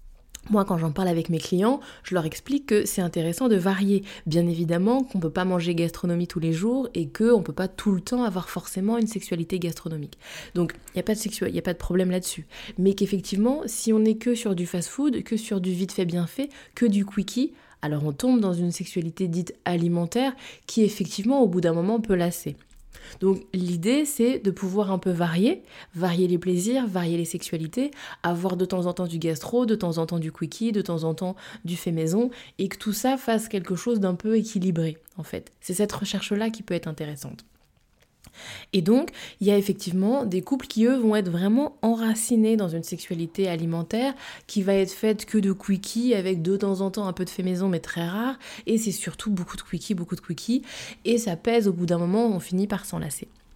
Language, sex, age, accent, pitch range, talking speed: French, female, 20-39, French, 175-220 Hz, 220 wpm